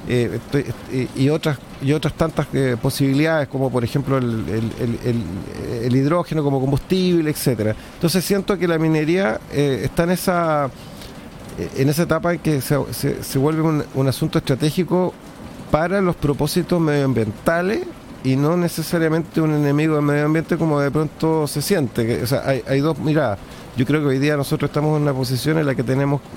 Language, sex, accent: Spanish, male, Argentinian